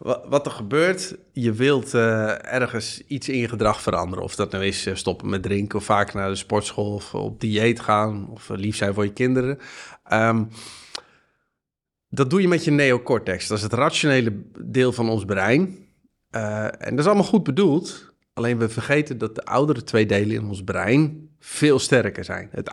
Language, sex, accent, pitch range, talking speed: Dutch, male, Dutch, 105-135 Hz, 190 wpm